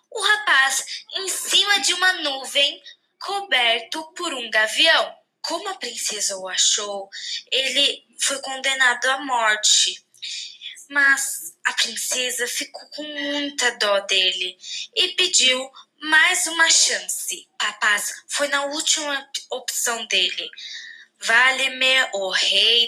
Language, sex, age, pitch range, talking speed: Portuguese, female, 10-29, 240-340 Hz, 115 wpm